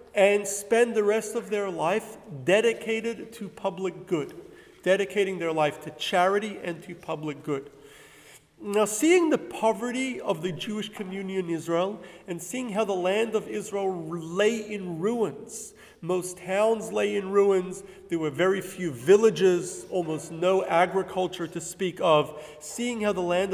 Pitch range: 160-210 Hz